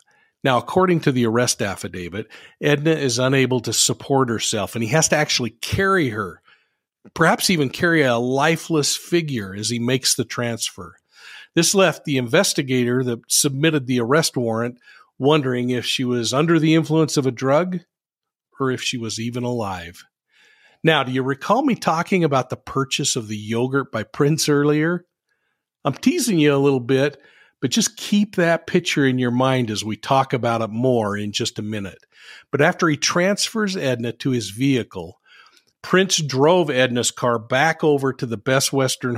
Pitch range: 120-155 Hz